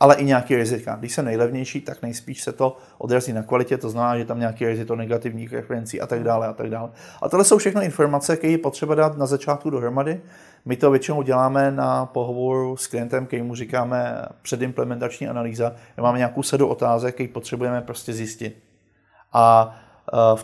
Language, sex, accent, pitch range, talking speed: Czech, male, native, 115-140 Hz, 180 wpm